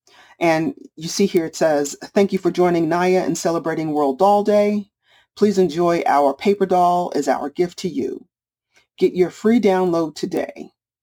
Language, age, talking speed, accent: English, 40-59, 170 wpm, American